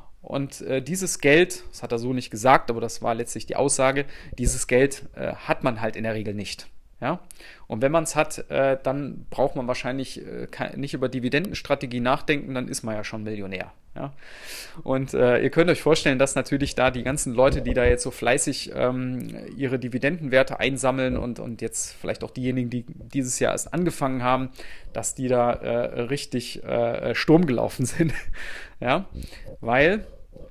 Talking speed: 180 wpm